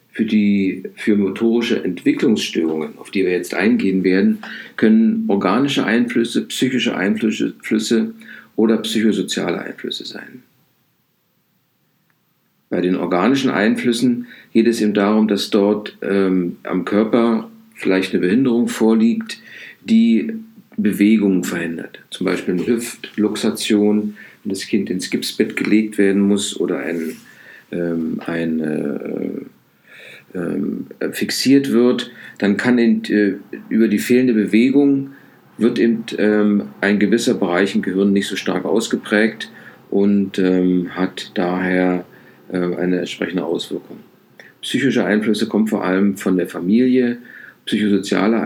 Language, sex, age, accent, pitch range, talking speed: German, male, 50-69, German, 95-115 Hz, 110 wpm